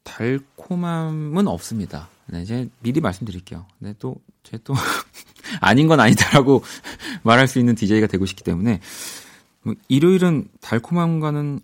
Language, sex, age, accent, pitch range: Korean, male, 40-59, native, 95-135 Hz